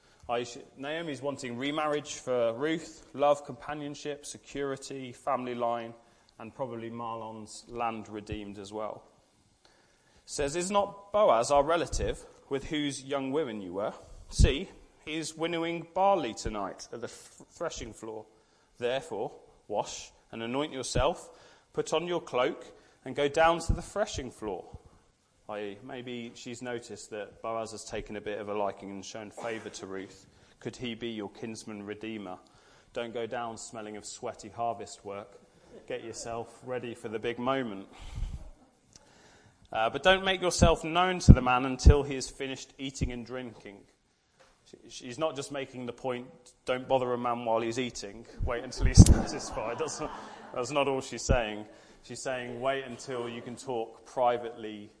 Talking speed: 155 wpm